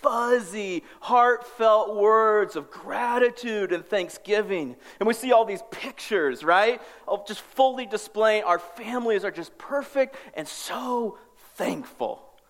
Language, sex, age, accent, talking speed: English, male, 40-59, American, 125 wpm